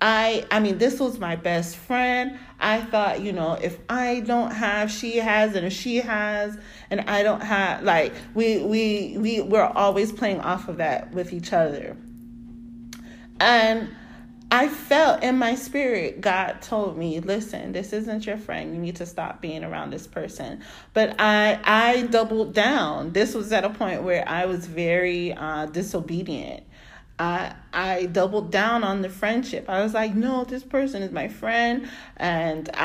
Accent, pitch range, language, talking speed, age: American, 175-230 Hz, English, 170 wpm, 30-49